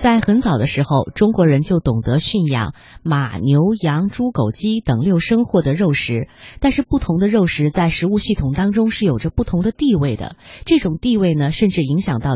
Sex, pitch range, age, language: female, 150-230 Hz, 20-39, Chinese